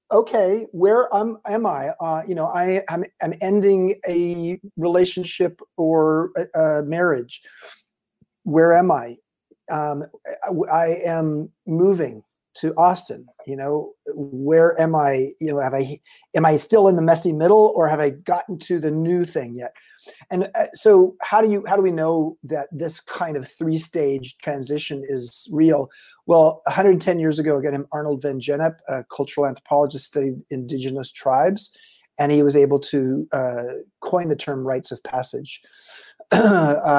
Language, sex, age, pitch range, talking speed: English, male, 40-59, 145-185 Hz, 155 wpm